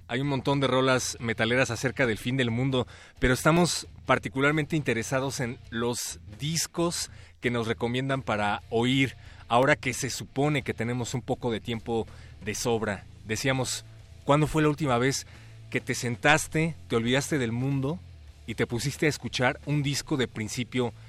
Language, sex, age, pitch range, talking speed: Spanish, male, 30-49, 110-145 Hz, 160 wpm